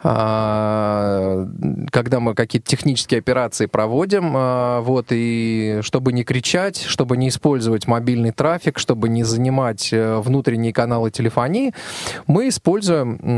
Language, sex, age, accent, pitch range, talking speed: Russian, male, 20-39, native, 120-155 Hz, 110 wpm